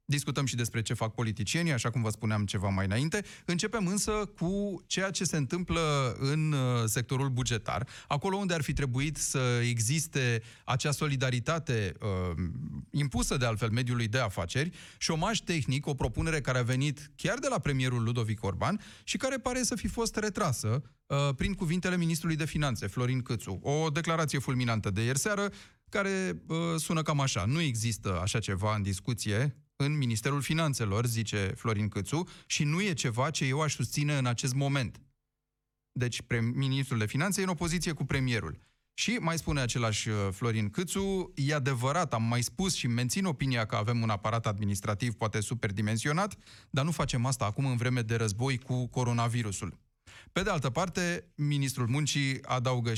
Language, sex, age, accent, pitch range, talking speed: Romanian, male, 30-49, native, 115-160 Hz, 170 wpm